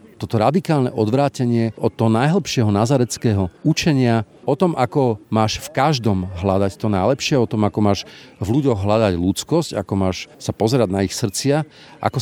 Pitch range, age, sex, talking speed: 95-120 Hz, 40-59, male, 160 wpm